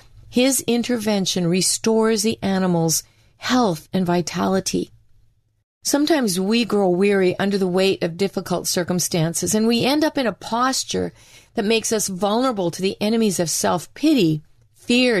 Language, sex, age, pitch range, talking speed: English, female, 40-59, 165-225 Hz, 140 wpm